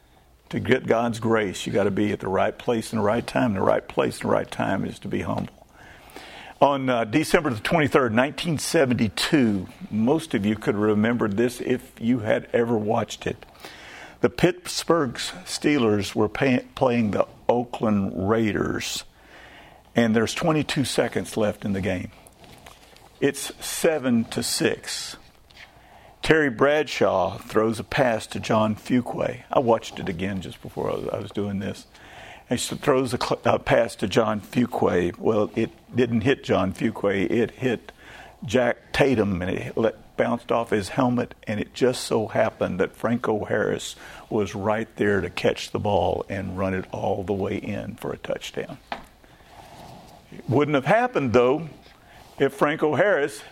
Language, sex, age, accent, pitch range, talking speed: English, male, 50-69, American, 105-130 Hz, 165 wpm